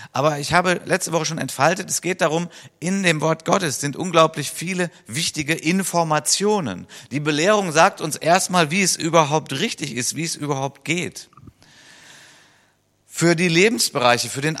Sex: male